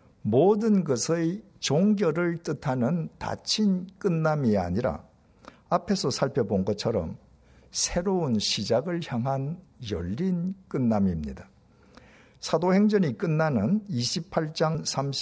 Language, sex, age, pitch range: Korean, male, 50-69, 115-185 Hz